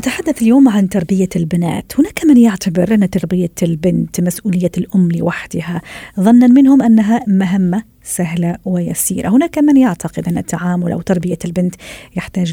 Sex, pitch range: female, 175-215 Hz